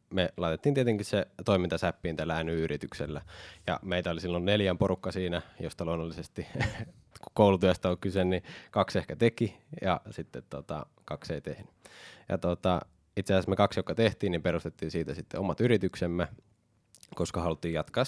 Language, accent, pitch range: Finnish, native, 80-100 Hz